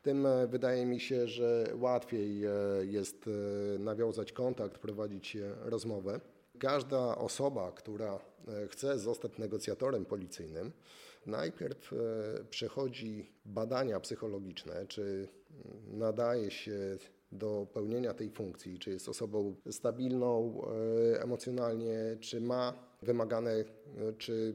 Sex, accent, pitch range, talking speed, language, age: male, native, 105-125 Hz, 95 wpm, Polish, 30-49